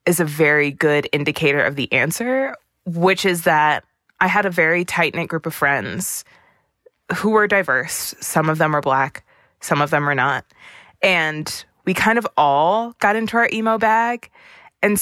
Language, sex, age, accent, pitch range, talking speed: English, female, 20-39, American, 145-190 Hz, 175 wpm